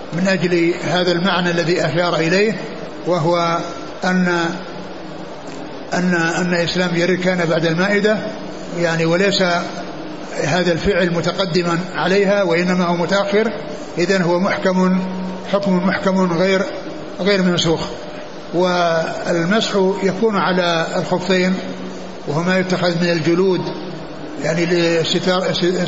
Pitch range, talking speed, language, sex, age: 175-195 Hz, 95 wpm, Arabic, male, 60-79